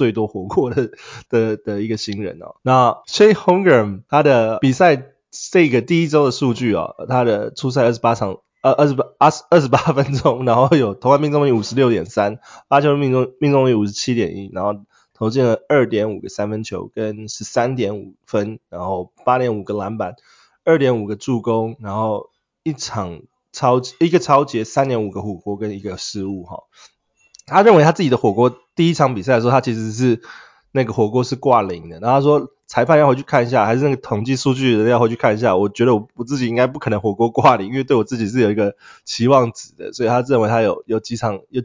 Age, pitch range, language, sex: 20-39, 105-135 Hz, Chinese, male